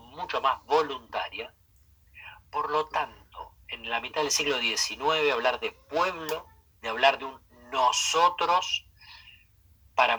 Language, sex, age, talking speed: Spanish, male, 40-59, 125 wpm